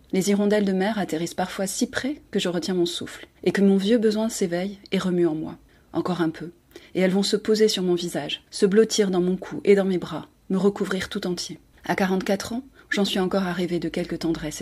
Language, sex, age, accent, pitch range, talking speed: French, female, 30-49, French, 160-200 Hz, 235 wpm